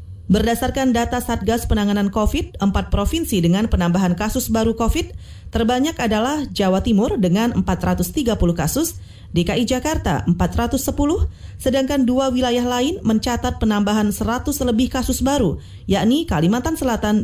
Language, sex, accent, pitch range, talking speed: Indonesian, female, native, 185-260 Hz, 120 wpm